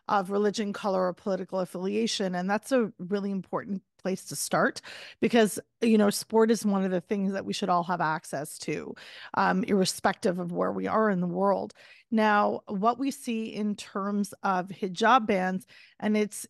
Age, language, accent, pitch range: 30-49, English, American, 185-215 Hz